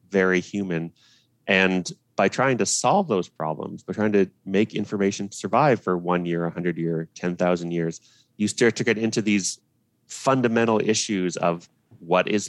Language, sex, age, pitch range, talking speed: English, male, 30-49, 90-115 Hz, 165 wpm